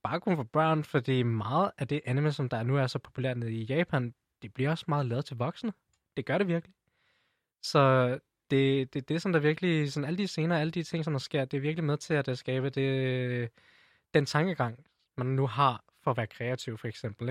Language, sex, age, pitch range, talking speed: Danish, male, 20-39, 115-150 Hz, 220 wpm